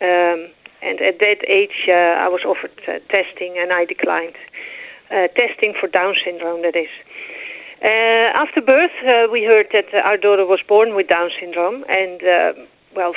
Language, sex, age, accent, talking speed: English, female, 40-59, Dutch, 175 wpm